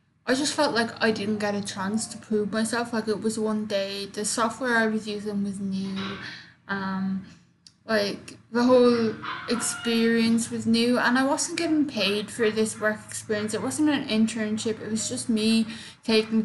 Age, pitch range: 10-29, 205-235 Hz